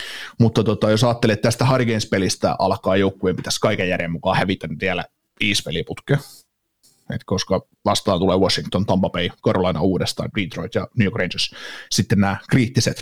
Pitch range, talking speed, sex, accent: 95-110 Hz, 145 wpm, male, native